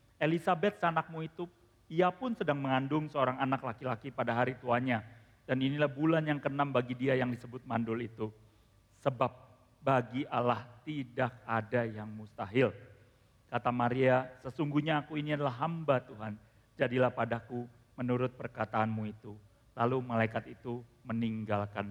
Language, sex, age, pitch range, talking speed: Indonesian, male, 40-59, 115-135 Hz, 130 wpm